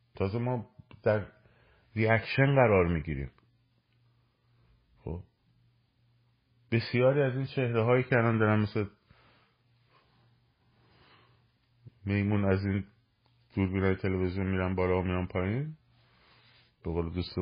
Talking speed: 95 wpm